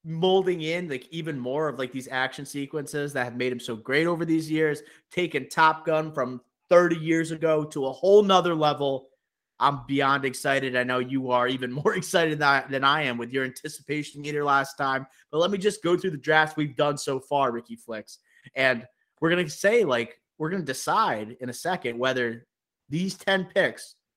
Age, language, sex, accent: 30-49, English, male, American